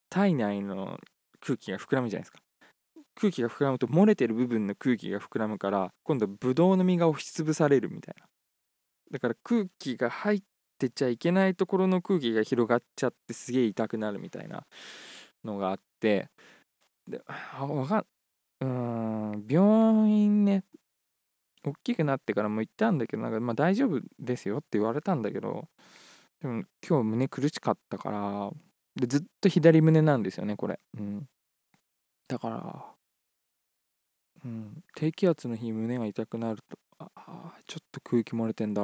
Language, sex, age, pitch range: Japanese, male, 20-39, 110-170 Hz